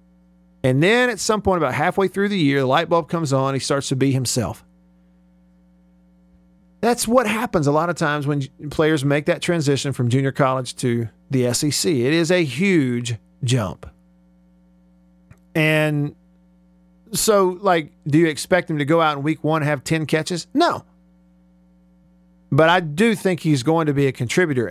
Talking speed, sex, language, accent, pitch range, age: 170 wpm, male, English, American, 105-175 Hz, 50-69